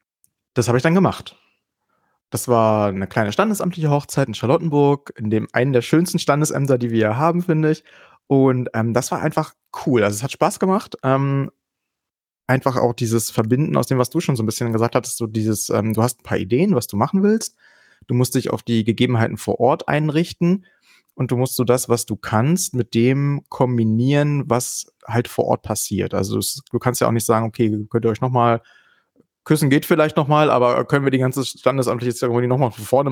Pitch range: 110-135 Hz